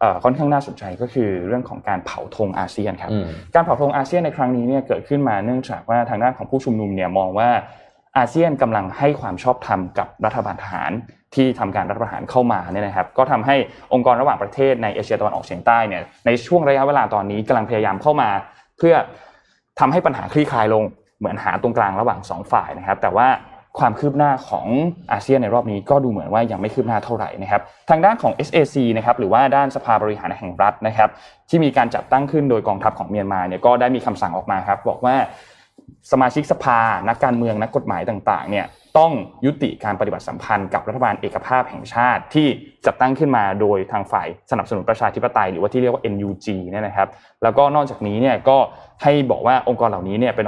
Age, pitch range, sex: 20-39, 105-135 Hz, male